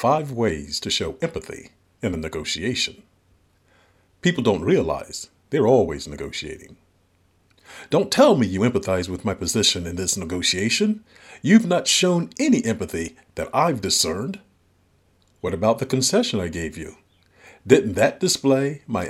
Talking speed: 140 wpm